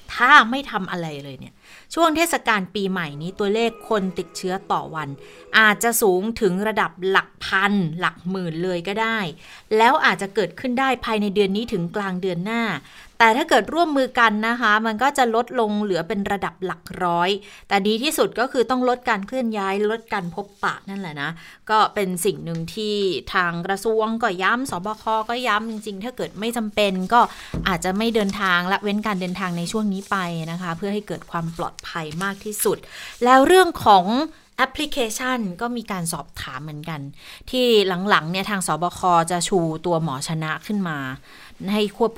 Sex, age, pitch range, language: female, 30-49, 175-220 Hz, Thai